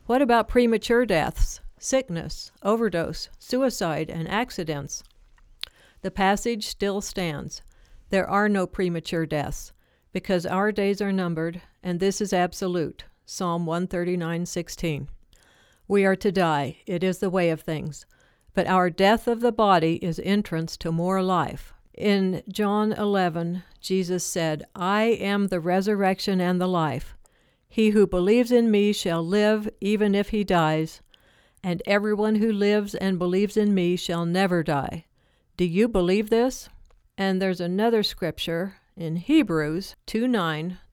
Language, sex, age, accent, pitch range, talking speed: English, female, 60-79, American, 170-210 Hz, 140 wpm